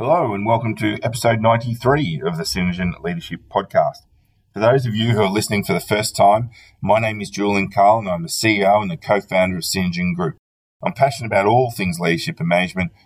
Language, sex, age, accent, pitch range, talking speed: English, male, 30-49, Australian, 90-120 Hz, 205 wpm